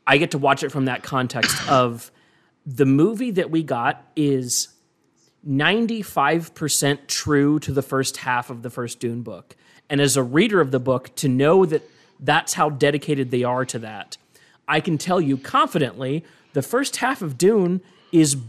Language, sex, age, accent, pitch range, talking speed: English, male, 30-49, American, 135-170 Hz, 175 wpm